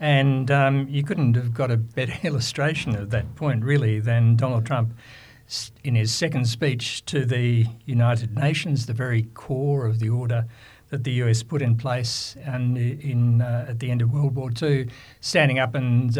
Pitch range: 120-140 Hz